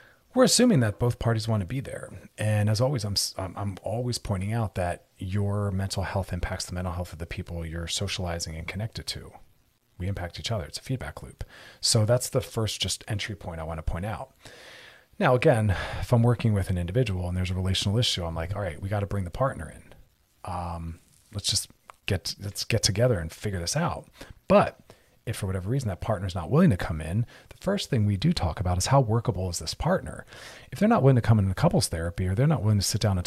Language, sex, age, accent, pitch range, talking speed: English, male, 30-49, American, 95-125 Hz, 235 wpm